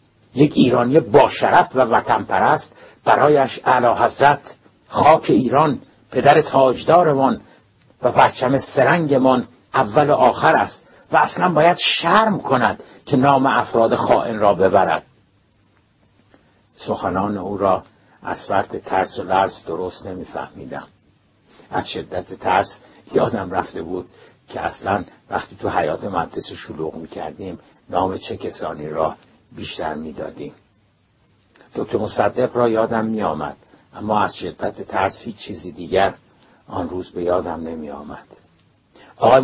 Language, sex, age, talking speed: Persian, male, 60-79, 120 wpm